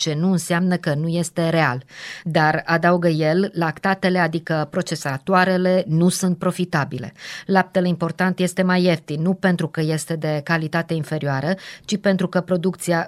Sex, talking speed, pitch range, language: female, 145 wpm, 155-185 Hz, Romanian